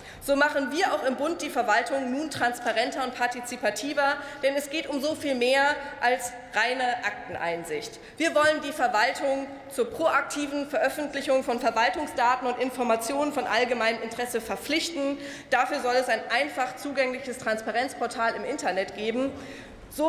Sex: female